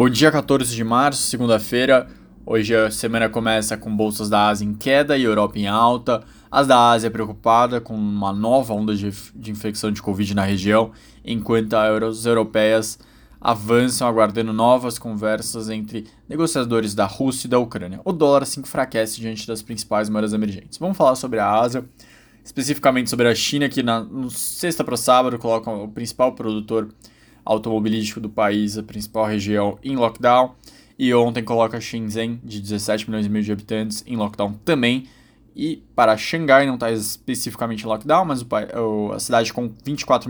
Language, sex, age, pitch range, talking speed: Portuguese, male, 20-39, 110-125 Hz, 165 wpm